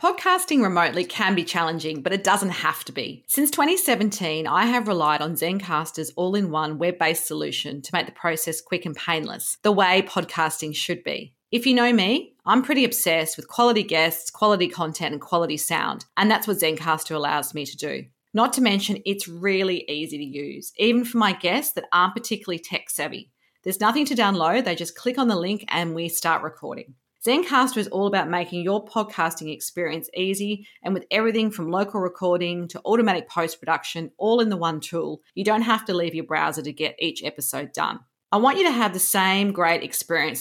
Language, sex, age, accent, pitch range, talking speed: English, female, 40-59, Australian, 160-210 Hz, 195 wpm